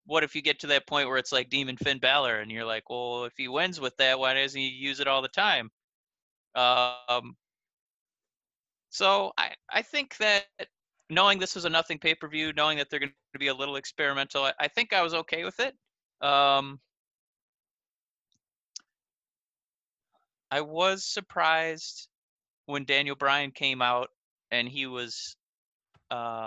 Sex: male